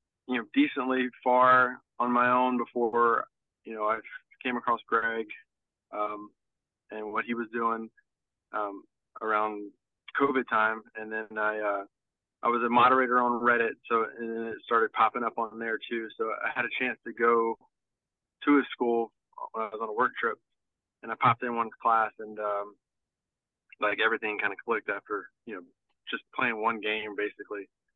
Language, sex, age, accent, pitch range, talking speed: English, male, 20-39, American, 110-120 Hz, 175 wpm